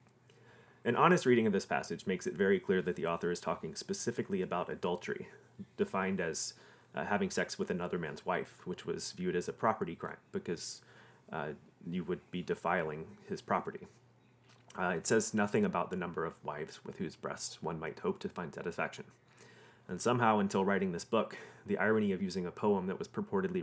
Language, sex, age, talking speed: English, male, 30-49, 190 wpm